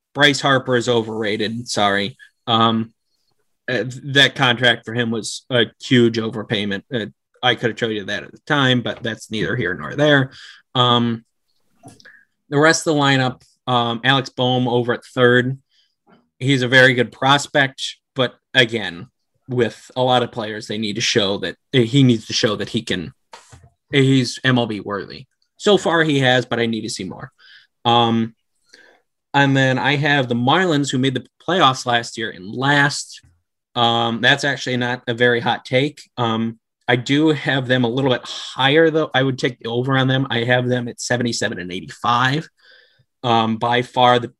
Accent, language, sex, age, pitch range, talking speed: American, English, male, 20-39, 115-135 Hz, 175 wpm